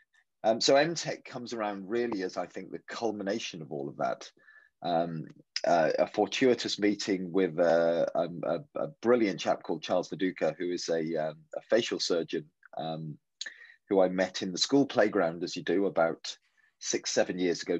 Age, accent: 30-49, British